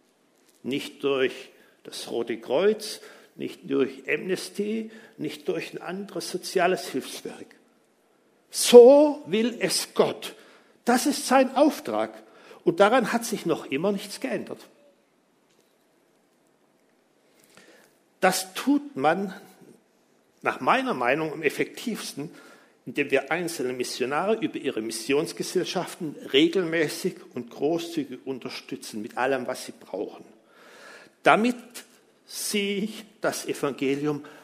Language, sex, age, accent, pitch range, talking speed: German, male, 60-79, German, 150-250 Hz, 100 wpm